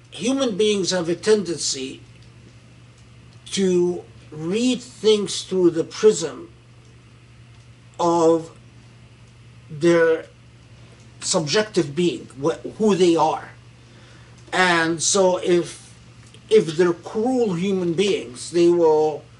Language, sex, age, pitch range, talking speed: English, male, 50-69, 120-175 Hz, 90 wpm